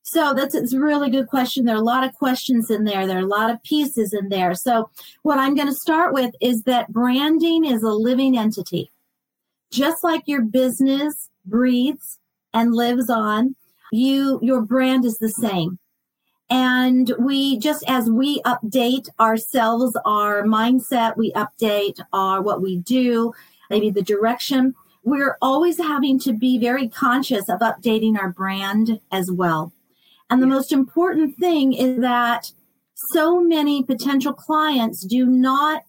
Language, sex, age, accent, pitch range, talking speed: English, female, 40-59, American, 220-270 Hz, 160 wpm